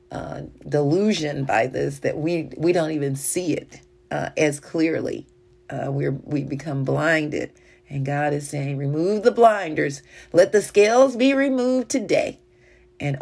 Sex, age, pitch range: female, 40-59, 145-190 Hz